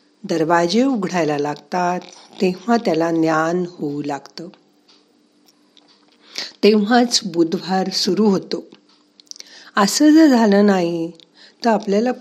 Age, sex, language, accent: 50-69, female, Marathi, native